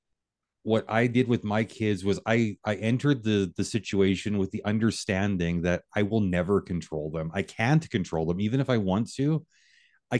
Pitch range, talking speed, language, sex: 100-125 Hz, 190 wpm, English, male